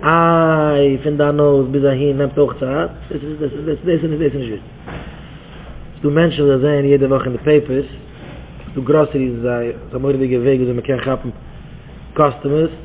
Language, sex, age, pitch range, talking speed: English, male, 20-39, 135-170 Hz, 155 wpm